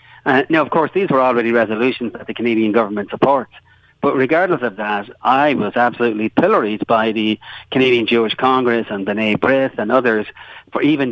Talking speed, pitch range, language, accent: 180 wpm, 110-125 Hz, English, Irish